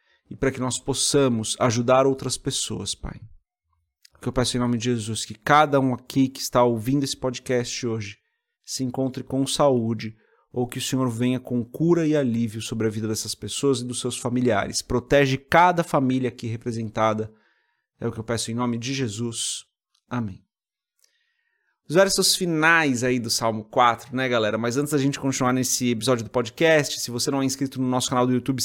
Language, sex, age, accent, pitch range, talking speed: Portuguese, male, 30-49, Brazilian, 120-145 Hz, 190 wpm